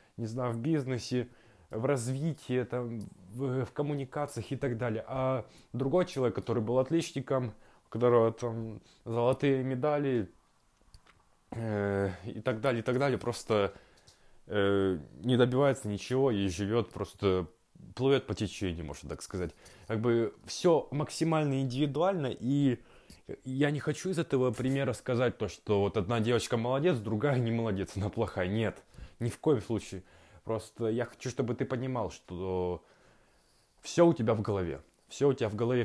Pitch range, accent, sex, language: 105-130 Hz, native, male, Russian